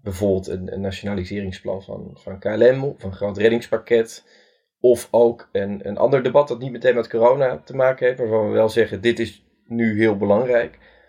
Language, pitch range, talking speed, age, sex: Dutch, 100-120 Hz, 185 wpm, 20-39, male